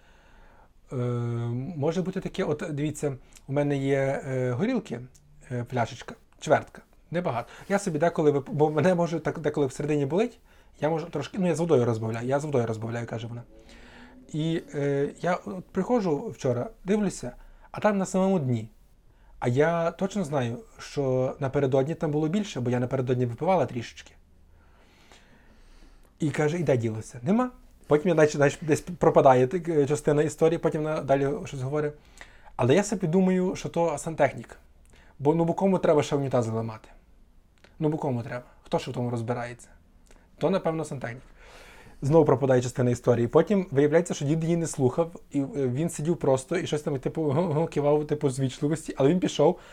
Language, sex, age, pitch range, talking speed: Ukrainian, male, 30-49, 125-165 Hz, 160 wpm